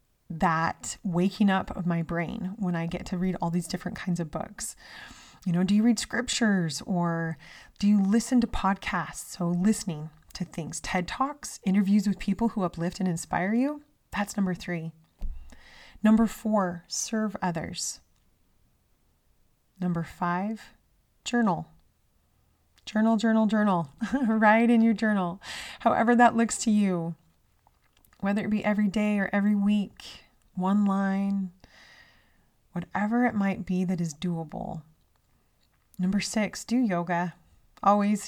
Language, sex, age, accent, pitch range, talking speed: English, female, 30-49, American, 170-210 Hz, 135 wpm